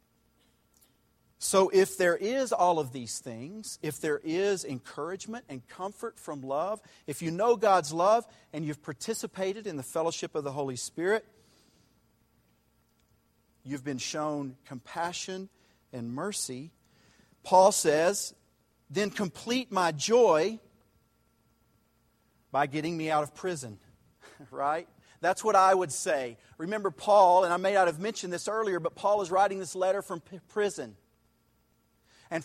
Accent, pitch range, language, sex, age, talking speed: American, 140-200 Hz, English, male, 40-59, 135 wpm